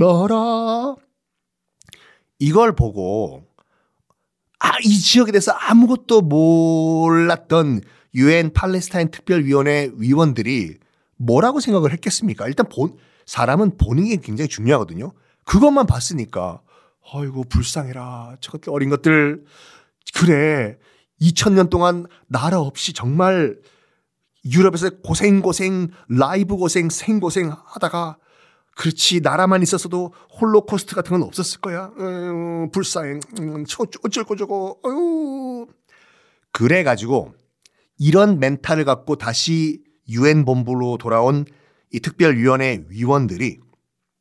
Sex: male